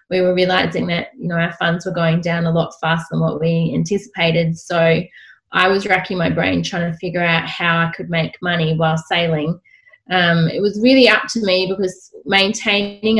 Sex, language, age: female, English, 20-39